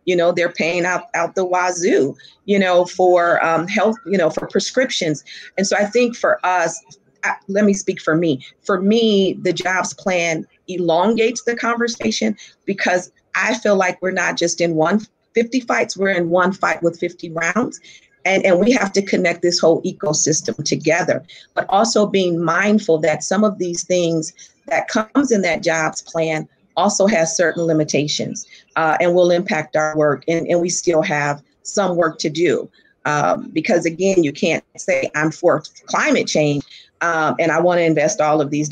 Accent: American